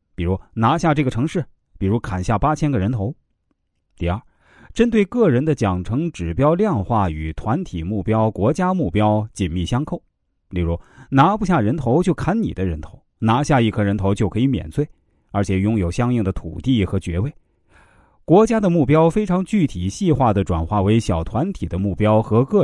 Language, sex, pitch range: Chinese, male, 95-145 Hz